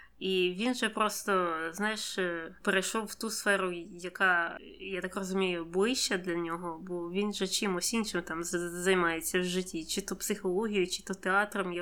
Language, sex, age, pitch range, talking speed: Ukrainian, female, 20-39, 180-215 Hz, 160 wpm